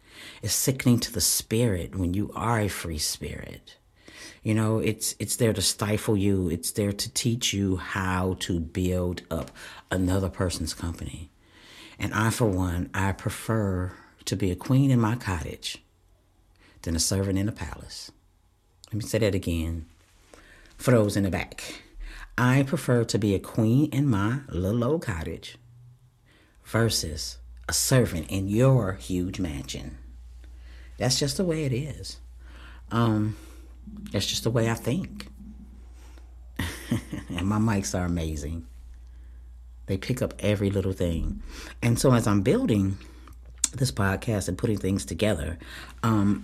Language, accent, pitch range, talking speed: English, American, 80-110 Hz, 145 wpm